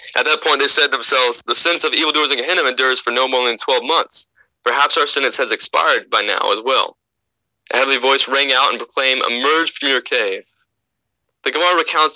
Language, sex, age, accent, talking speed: English, male, 20-39, American, 210 wpm